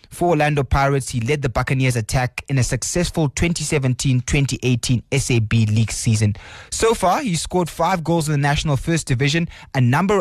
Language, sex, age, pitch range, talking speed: English, male, 20-39, 125-155 Hz, 170 wpm